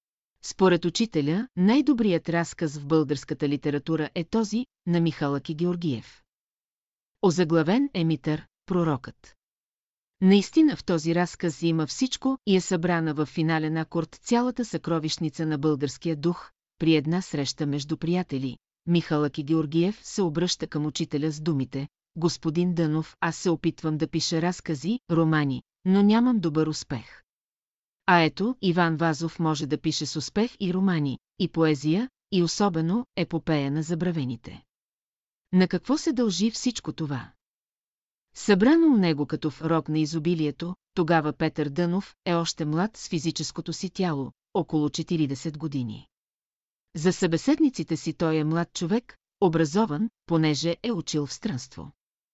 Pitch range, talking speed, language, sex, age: 155-185 Hz, 135 wpm, Bulgarian, female, 40-59